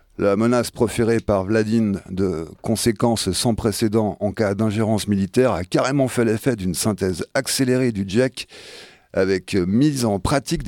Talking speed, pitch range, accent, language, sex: 145 wpm, 95-120 Hz, French, French, male